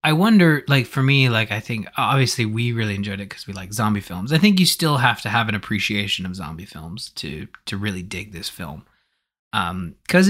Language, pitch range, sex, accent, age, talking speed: English, 100-125 Hz, male, American, 20-39, 215 wpm